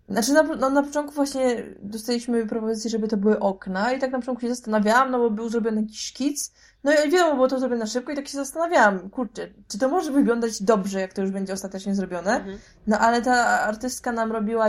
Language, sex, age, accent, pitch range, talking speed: Polish, female, 20-39, native, 200-230 Hz, 215 wpm